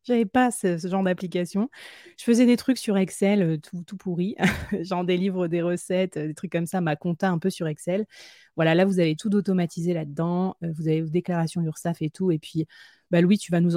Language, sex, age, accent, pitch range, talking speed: French, female, 30-49, French, 170-210 Hz, 220 wpm